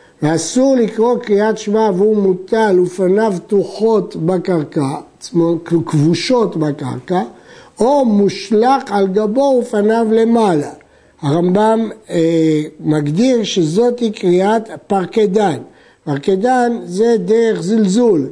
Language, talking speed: Hebrew, 95 wpm